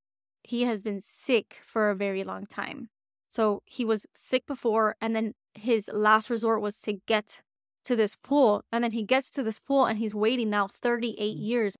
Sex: female